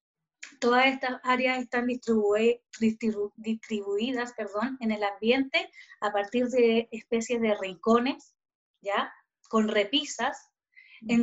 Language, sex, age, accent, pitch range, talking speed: Spanish, female, 20-39, American, 210-265 Hz, 110 wpm